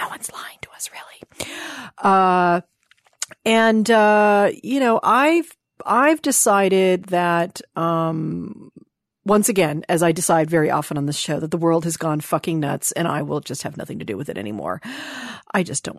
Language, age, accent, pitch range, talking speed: English, 40-59, American, 155-200 Hz, 175 wpm